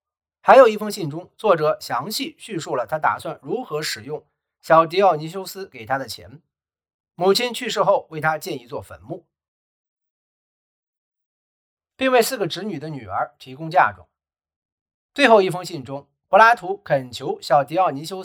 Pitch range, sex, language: 140-210 Hz, male, Chinese